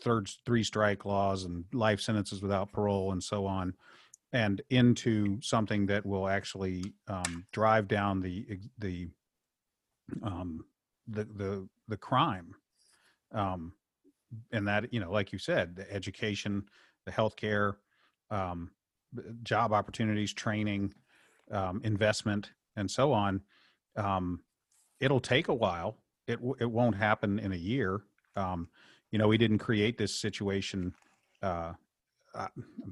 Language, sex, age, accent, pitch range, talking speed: English, male, 40-59, American, 95-110 Hz, 130 wpm